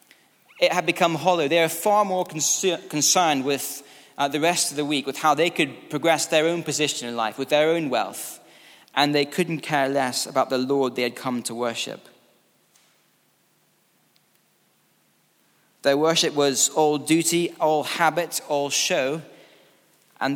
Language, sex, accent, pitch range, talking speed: English, male, British, 135-170 Hz, 155 wpm